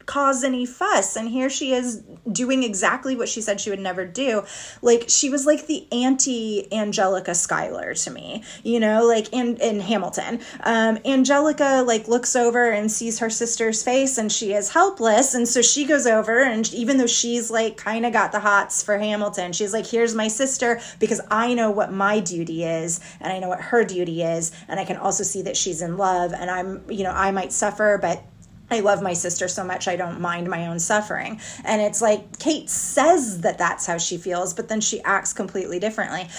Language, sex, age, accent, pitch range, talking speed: English, female, 30-49, American, 190-255 Hz, 210 wpm